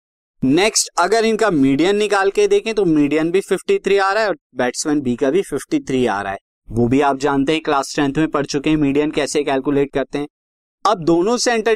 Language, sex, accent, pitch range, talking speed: Hindi, male, native, 135-195 Hz, 220 wpm